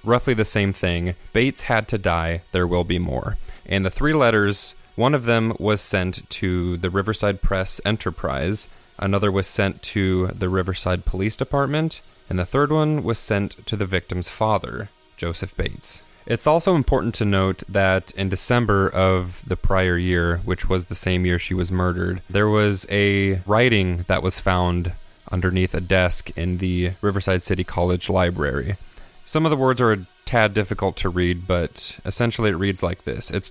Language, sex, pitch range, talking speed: English, male, 90-105 Hz, 175 wpm